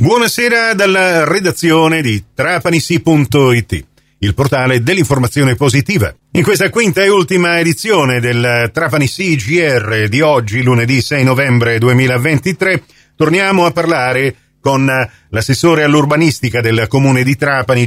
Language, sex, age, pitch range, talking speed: Italian, male, 40-59, 115-155 Hz, 115 wpm